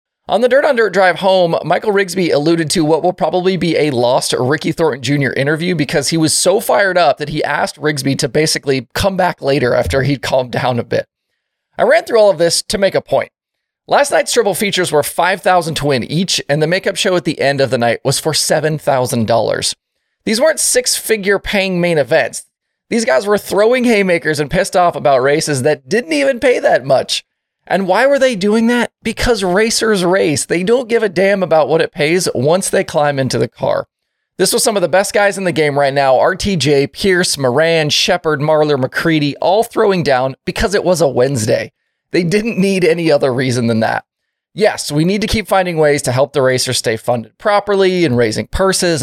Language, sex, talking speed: English, male, 210 wpm